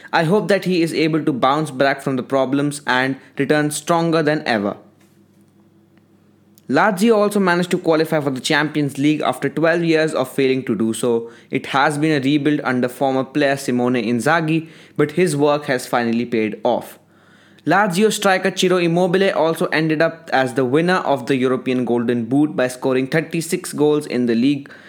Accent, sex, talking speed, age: Indian, male, 175 wpm, 20-39